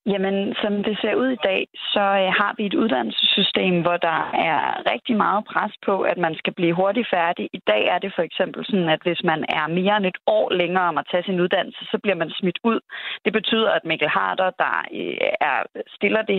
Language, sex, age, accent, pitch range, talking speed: Danish, female, 30-49, native, 180-220 Hz, 215 wpm